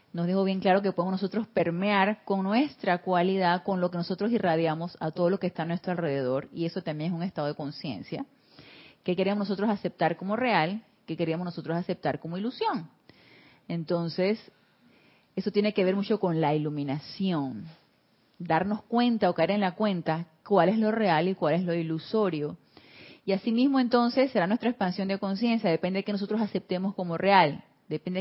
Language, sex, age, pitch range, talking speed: Spanish, female, 30-49, 175-220 Hz, 180 wpm